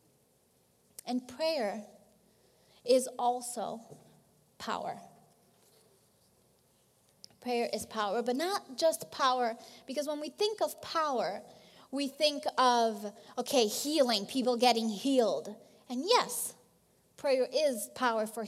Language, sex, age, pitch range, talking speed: English, female, 20-39, 215-255 Hz, 105 wpm